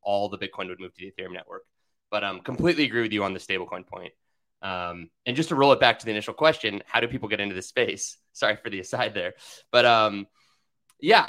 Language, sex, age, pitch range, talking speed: English, male, 20-39, 95-125 Hz, 245 wpm